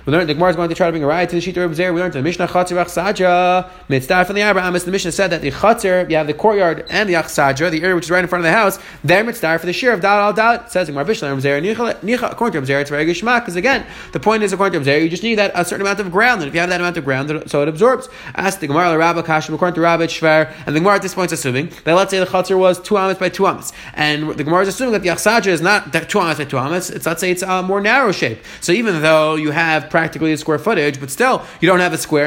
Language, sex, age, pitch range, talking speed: English, male, 30-49, 160-205 Hz, 310 wpm